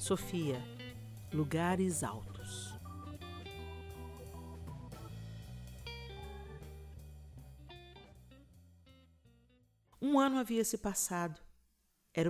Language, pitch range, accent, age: Portuguese, 150-200 Hz, Brazilian, 50-69